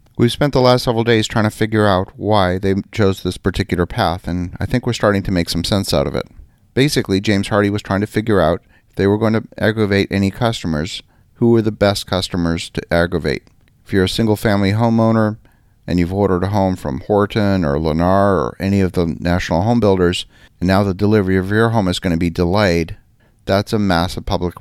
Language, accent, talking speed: English, American, 215 wpm